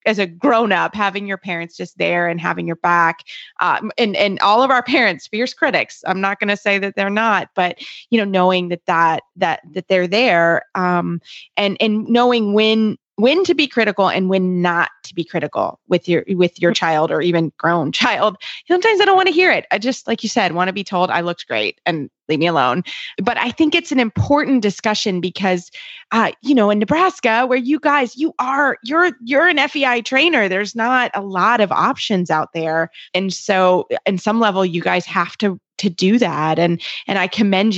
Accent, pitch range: American, 180-235 Hz